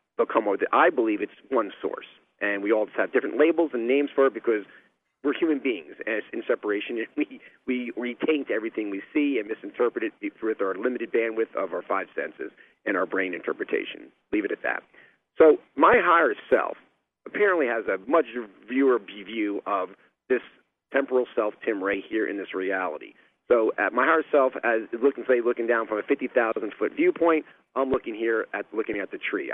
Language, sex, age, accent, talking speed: English, male, 40-59, American, 195 wpm